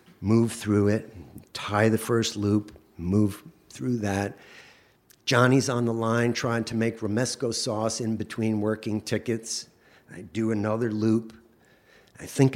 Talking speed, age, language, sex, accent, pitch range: 140 wpm, 50-69, English, male, American, 105-135 Hz